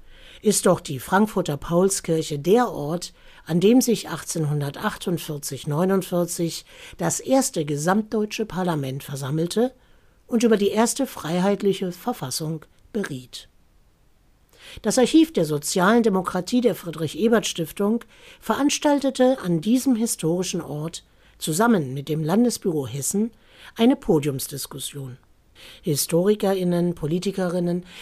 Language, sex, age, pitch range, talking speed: German, female, 60-79, 155-220 Hz, 95 wpm